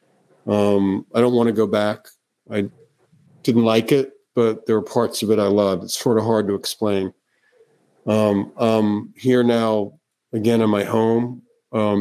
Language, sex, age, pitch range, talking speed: English, male, 50-69, 105-120 Hz, 175 wpm